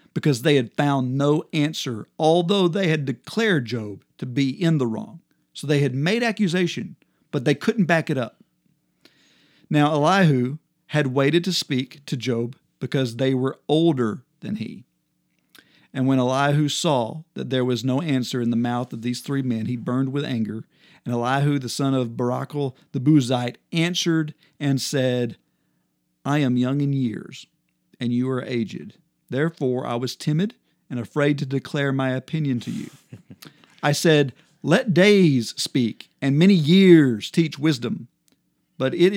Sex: male